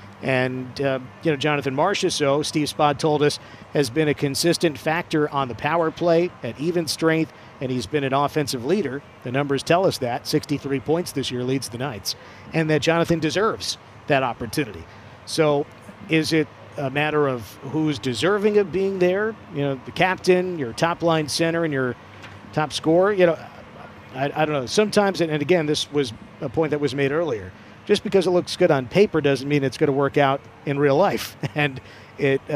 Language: English